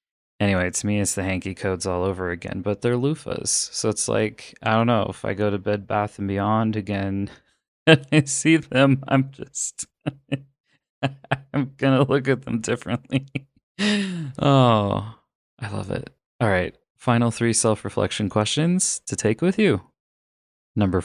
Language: English